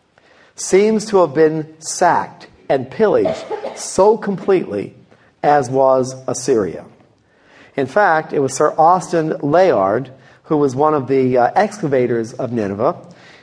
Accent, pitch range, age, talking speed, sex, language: American, 130-170 Hz, 50-69, 130 wpm, male, English